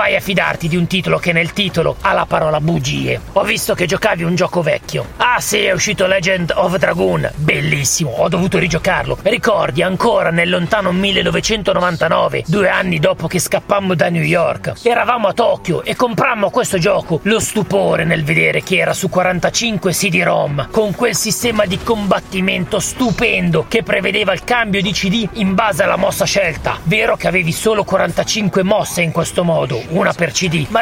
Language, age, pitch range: Italian, 40-59, 170-205 Hz